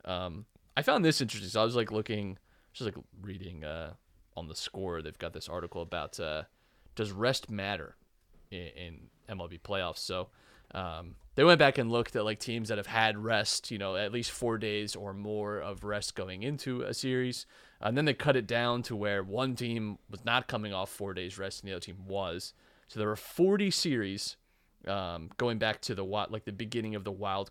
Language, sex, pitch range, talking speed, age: English, male, 95-125 Hz, 210 wpm, 30-49